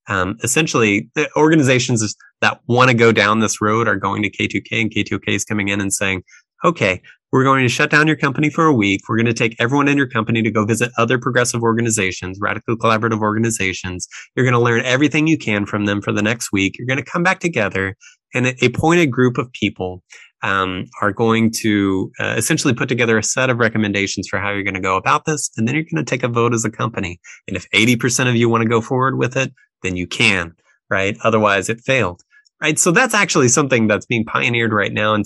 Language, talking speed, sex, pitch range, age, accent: English, 230 wpm, male, 105-135 Hz, 20-39, American